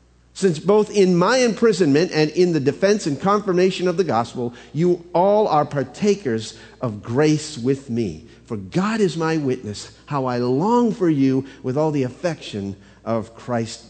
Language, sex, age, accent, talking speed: English, male, 50-69, American, 165 wpm